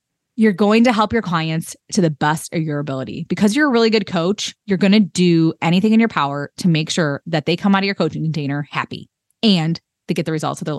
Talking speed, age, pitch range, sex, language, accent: 250 wpm, 20-39, 170-230 Hz, female, English, American